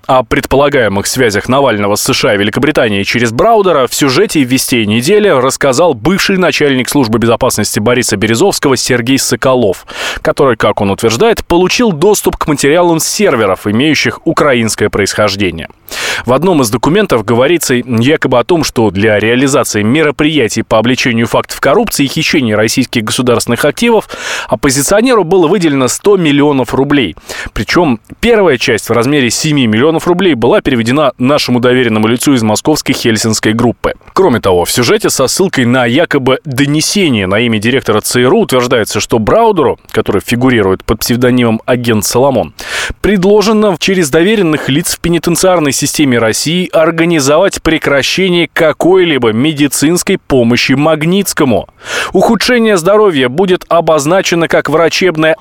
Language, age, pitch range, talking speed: Russian, 20-39, 120-170 Hz, 130 wpm